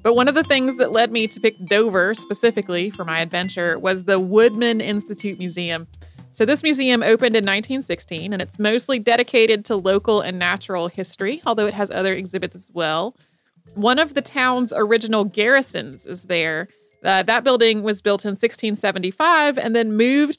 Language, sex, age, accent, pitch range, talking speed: English, female, 30-49, American, 190-240 Hz, 175 wpm